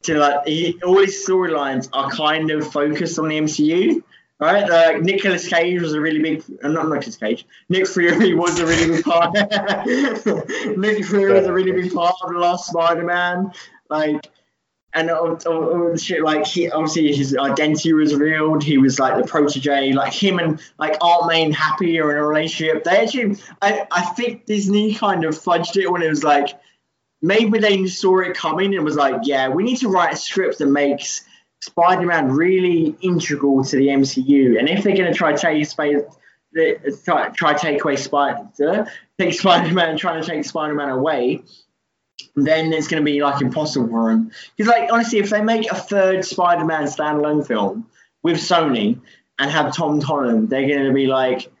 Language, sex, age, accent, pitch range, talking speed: English, male, 20-39, British, 150-185 Hz, 180 wpm